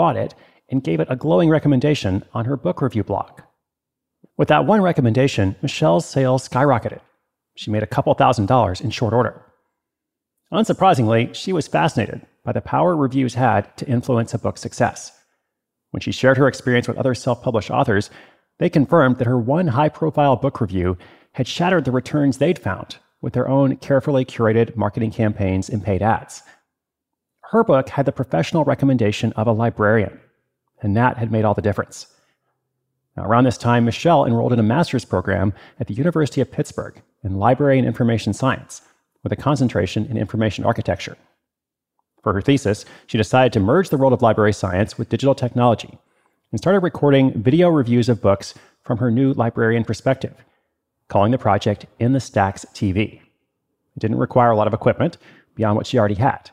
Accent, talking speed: American, 175 wpm